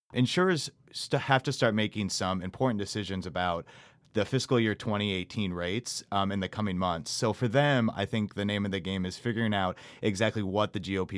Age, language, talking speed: 30-49, English, 195 wpm